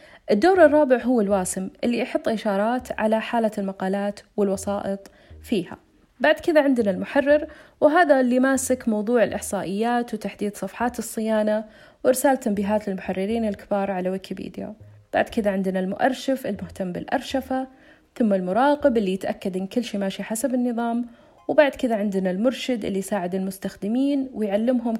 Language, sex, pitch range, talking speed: Arabic, female, 200-260 Hz, 130 wpm